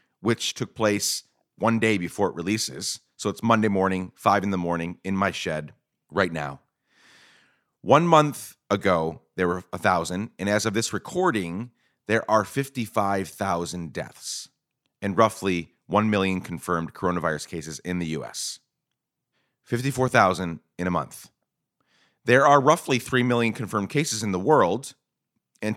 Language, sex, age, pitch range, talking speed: English, male, 30-49, 95-125 Hz, 140 wpm